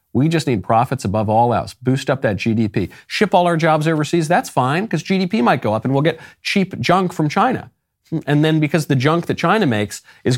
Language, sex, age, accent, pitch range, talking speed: English, male, 40-59, American, 110-170 Hz, 225 wpm